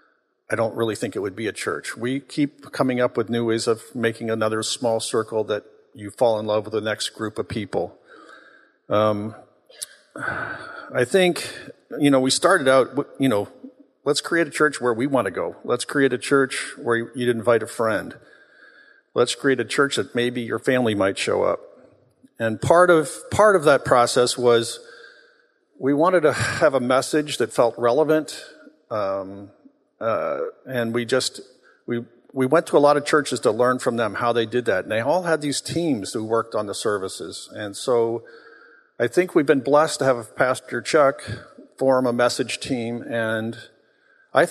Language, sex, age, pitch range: English, male, 50-69, 115-145 Hz